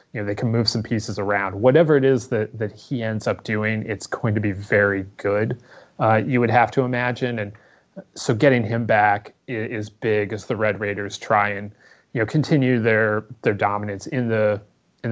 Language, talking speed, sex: English, 205 wpm, male